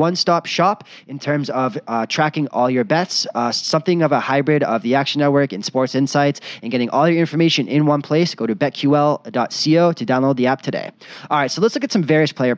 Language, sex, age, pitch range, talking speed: English, male, 20-39, 115-150 Hz, 230 wpm